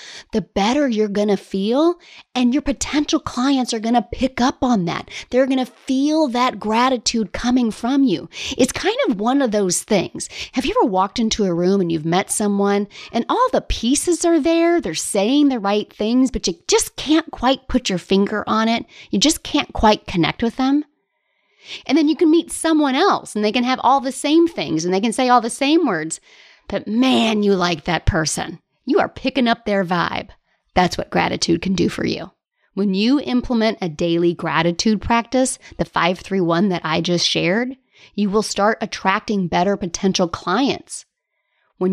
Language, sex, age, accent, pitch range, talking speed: English, female, 40-59, American, 185-255 Hz, 195 wpm